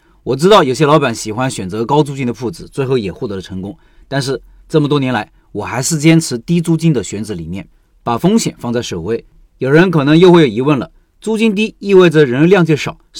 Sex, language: male, Chinese